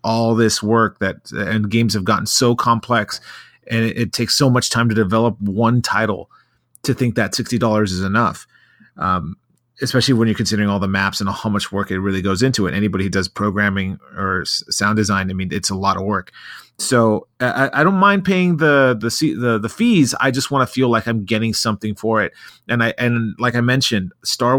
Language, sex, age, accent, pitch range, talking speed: English, male, 30-49, American, 105-125 Hz, 215 wpm